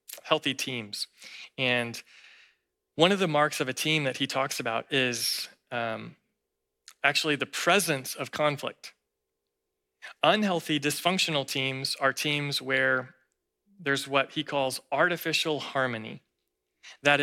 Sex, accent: male, American